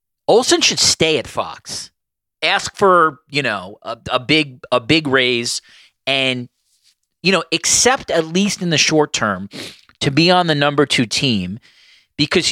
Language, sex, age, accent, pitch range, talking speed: English, male, 40-59, American, 120-155 Hz, 160 wpm